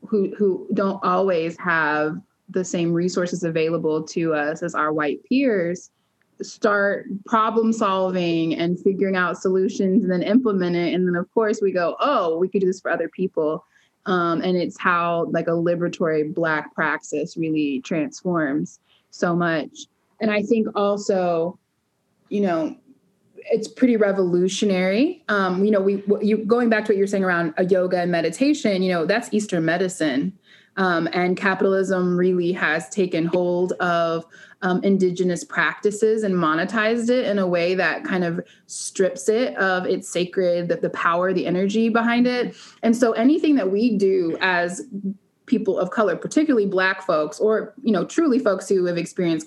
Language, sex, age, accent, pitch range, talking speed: English, female, 20-39, American, 170-205 Hz, 165 wpm